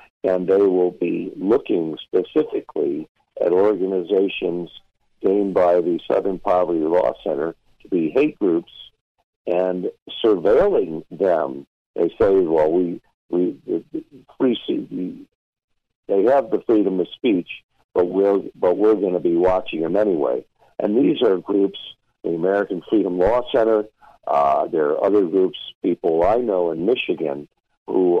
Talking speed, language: 145 wpm, English